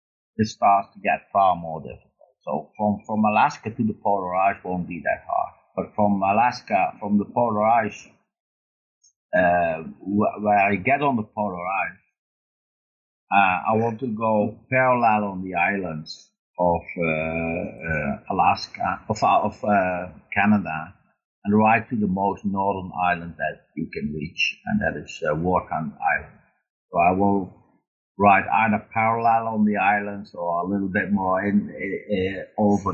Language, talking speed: English, 155 wpm